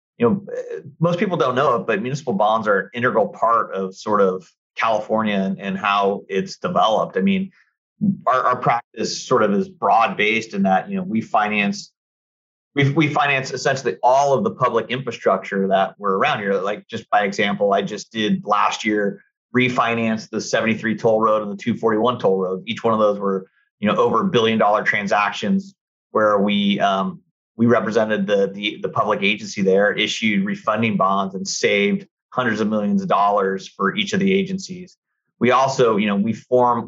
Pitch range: 100-165 Hz